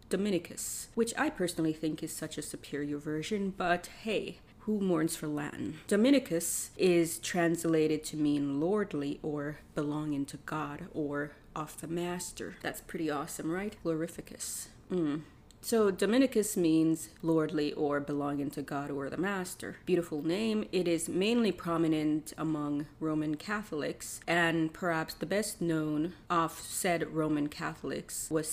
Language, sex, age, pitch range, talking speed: English, female, 30-49, 150-180 Hz, 140 wpm